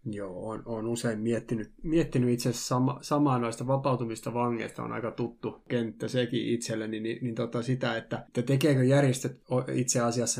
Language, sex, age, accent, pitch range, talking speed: Finnish, male, 20-39, native, 110-125 Hz, 155 wpm